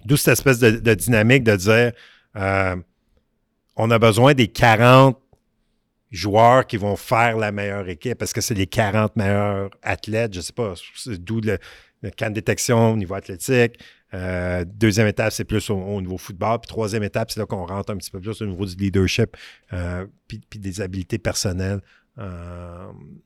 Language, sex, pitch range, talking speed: French, male, 95-115 Hz, 190 wpm